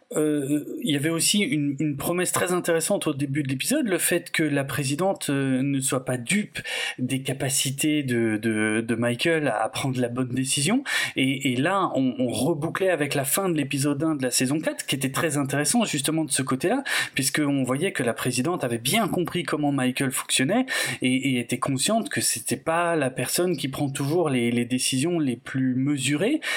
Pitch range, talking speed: 135-205 Hz, 200 wpm